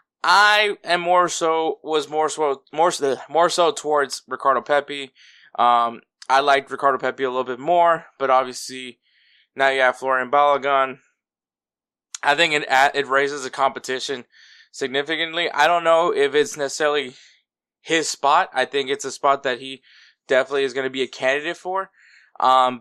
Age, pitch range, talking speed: 20-39, 130-155 Hz, 165 wpm